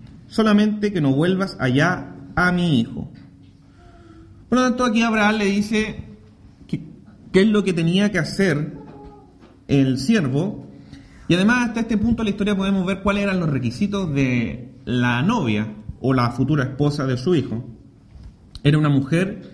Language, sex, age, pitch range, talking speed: English, male, 30-49, 135-205 Hz, 155 wpm